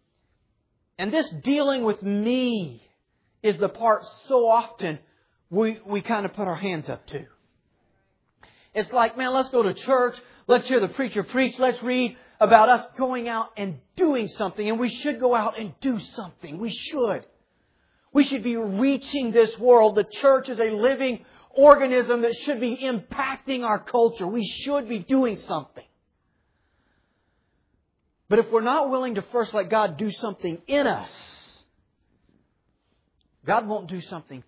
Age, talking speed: 50-69, 155 wpm